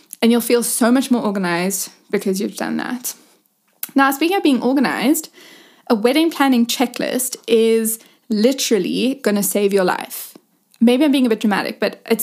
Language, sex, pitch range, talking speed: English, female, 220-280 Hz, 170 wpm